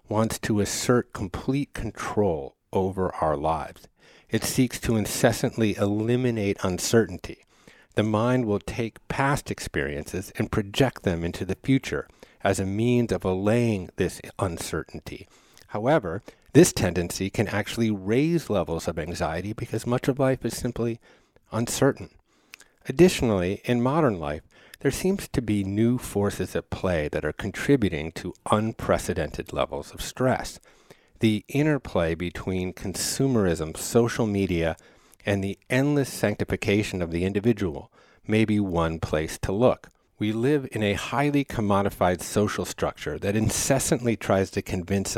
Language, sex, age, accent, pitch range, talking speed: English, male, 50-69, American, 95-115 Hz, 135 wpm